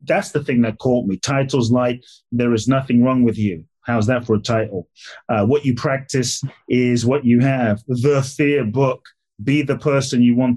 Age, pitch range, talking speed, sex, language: 30-49, 120-145 Hz, 200 wpm, male, English